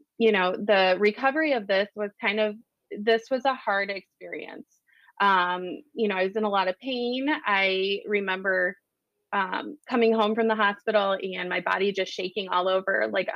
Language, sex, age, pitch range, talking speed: English, female, 20-39, 195-235 Hz, 180 wpm